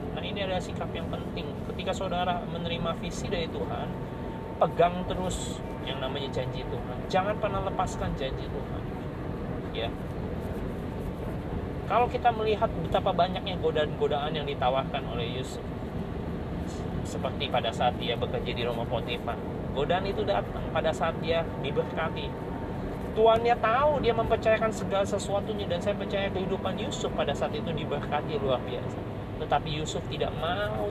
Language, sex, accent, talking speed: Indonesian, male, native, 135 wpm